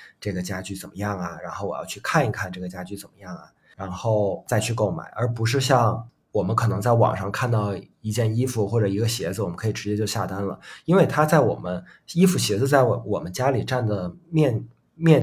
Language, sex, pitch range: Chinese, male, 105-135 Hz